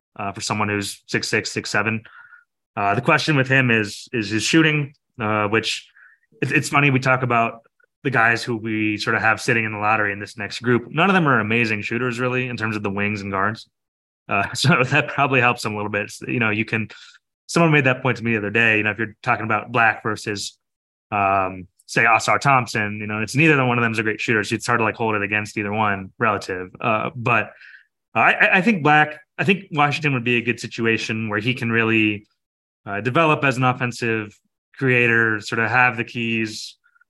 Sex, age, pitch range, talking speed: male, 20-39, 105-130 Hz, 225 wpm